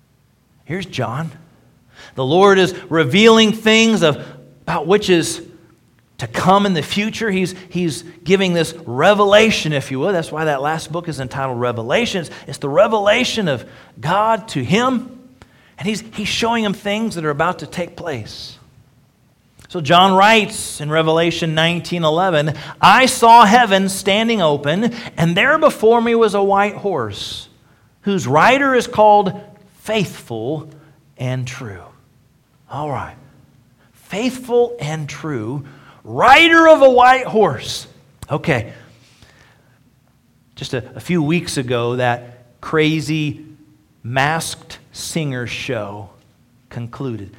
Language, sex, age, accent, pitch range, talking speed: English, male, 40-59, American, 135-215 Hz, 125 wpm